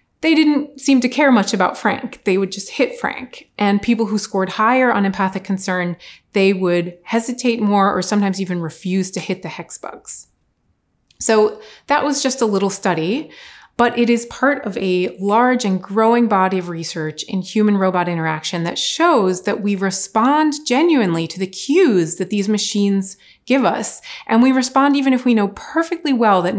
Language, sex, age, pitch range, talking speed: English, female, 30-49, 185-240 Hz, 180 wpm